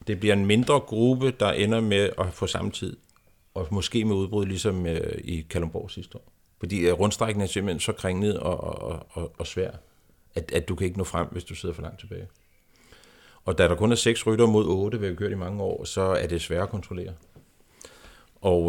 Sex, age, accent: male, 60-79, native